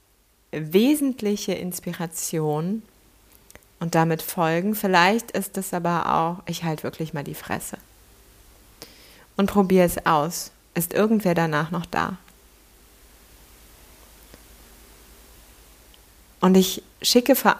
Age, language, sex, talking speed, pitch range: 30-49, German, female, 100 wpm, 165-205 Hz